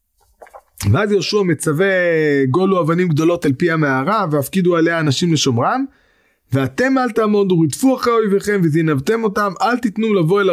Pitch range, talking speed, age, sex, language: 150-210 Hz, 140 wpm, 20-39, male, Hebrew